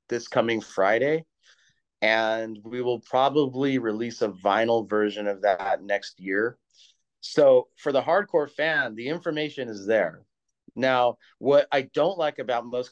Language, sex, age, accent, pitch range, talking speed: English, male, 30-49, American, 115-150 Hz, 145 wpm